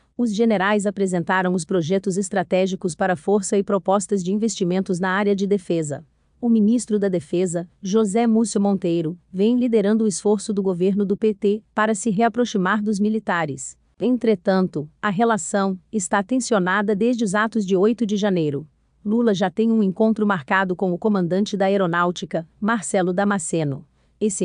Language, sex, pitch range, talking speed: Portuguese, female, 185-215 Hz, 150 wpm